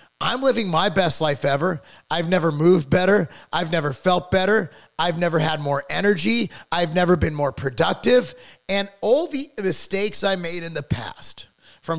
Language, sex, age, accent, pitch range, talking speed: English, male, 30-49, American, 145-190 Hz, 170 wpm